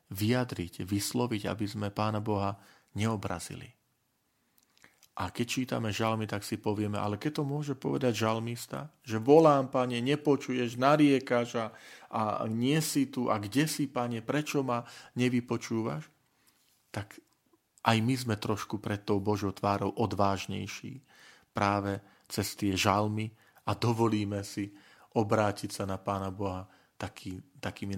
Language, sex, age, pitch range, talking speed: Slovak, male, 40-59, 100-130 Hz, 125 wpm